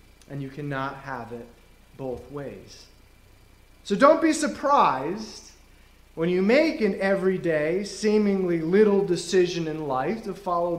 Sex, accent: male, American